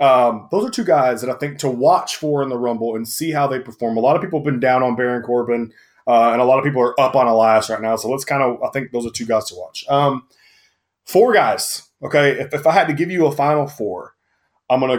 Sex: male